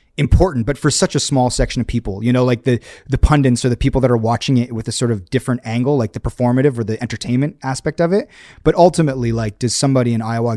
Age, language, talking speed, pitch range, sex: 30-49, English, 250 wpm, 115-140 Hz, male